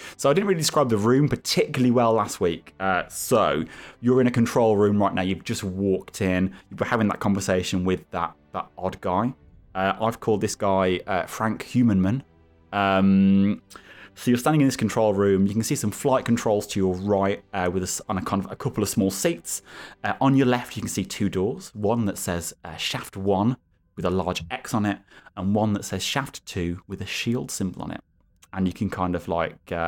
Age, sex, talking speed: 20-39, male, 225 wpm